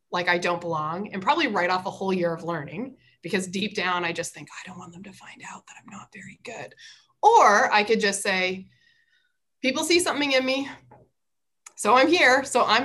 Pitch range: 175-225 Hz